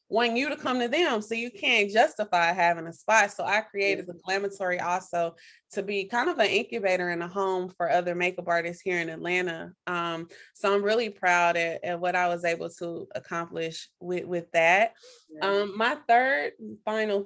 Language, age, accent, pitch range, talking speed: English, 20-39, American, 175-220 Hz, 195 wpm